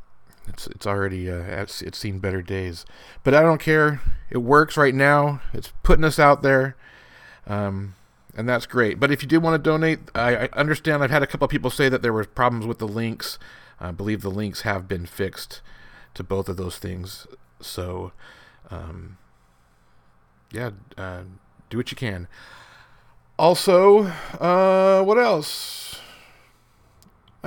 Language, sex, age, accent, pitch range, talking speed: English, male, 40-59, American, 110-145 Hz, 160 wpm